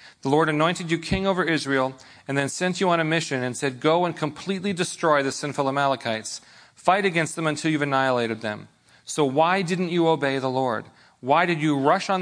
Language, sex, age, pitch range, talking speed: English, male, 40-59, 125-185 Hz, 205 wpm